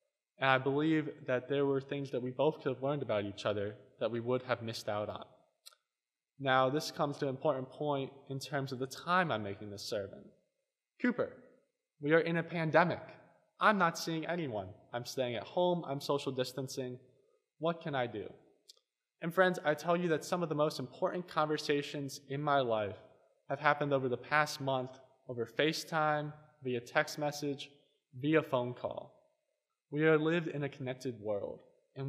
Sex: male